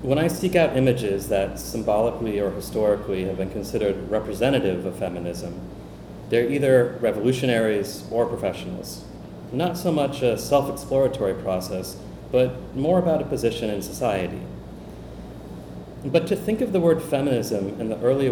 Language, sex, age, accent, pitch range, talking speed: English, male, 30-49, American, 100-140 Hz, 140 wpm